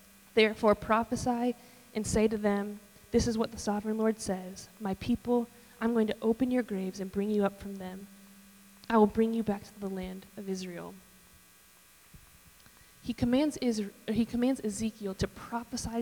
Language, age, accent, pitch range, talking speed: English, 20-39, American, 195-225 Hz, 155 wpm